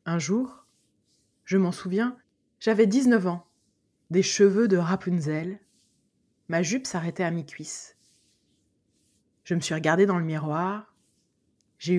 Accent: French